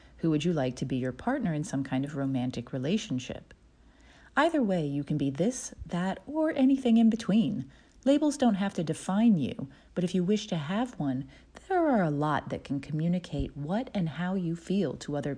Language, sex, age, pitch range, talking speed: English, female, 40-59, 135-205 Hz, 205 wpm